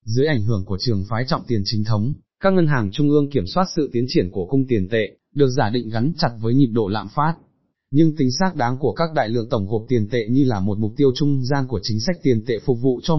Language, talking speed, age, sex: Vietnamese, 280 wpm, 20-39, male